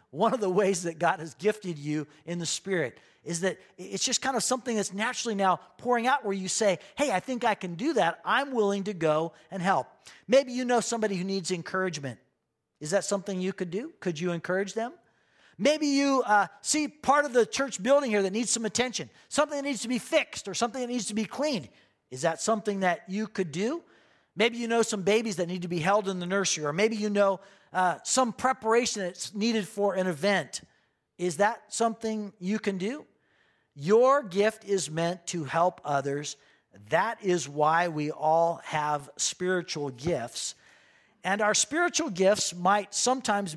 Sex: male